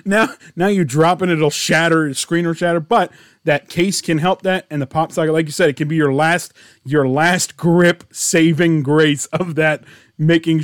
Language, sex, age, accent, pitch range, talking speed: English, male, 30-49, American, 130-165 Hz, 210 wpm